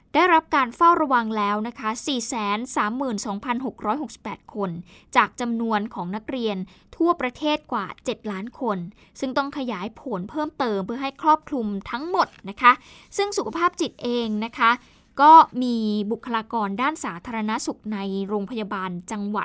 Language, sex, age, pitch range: Thai, female, 20-39, 210-280 Hz